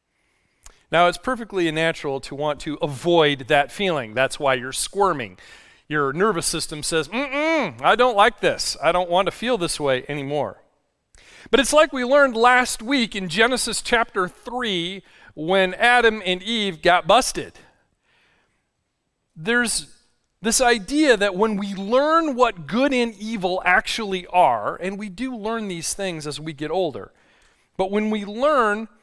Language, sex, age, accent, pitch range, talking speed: English, male, 40-59, American, 165-230 Hz, 155 wpm